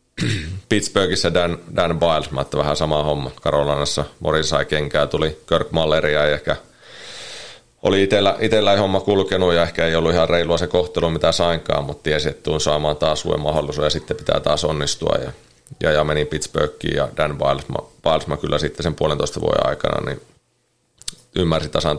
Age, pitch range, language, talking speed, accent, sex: 30-49, 75-85 Hz, Finnish, 165 wpm, native, male